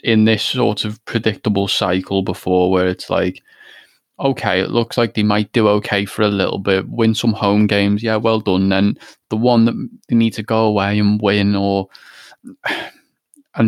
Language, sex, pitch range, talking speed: English, male, 95-115 Hz, 185 wpm